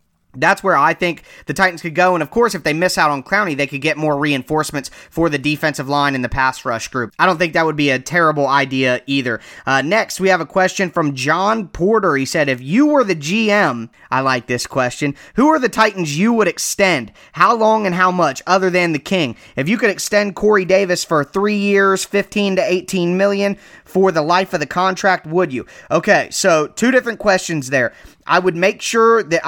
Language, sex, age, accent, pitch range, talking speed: English, male, 30-49, American, 140-185 Hz, 220 wpm